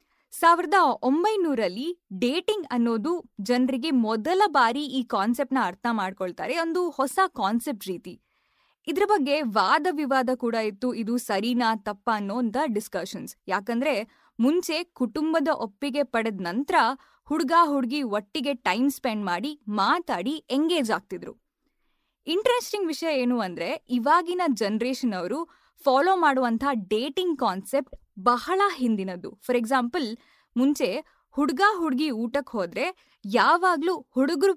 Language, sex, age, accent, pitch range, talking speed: Kannada, female, 20-39, native, 230-320 Hz, 115 wpm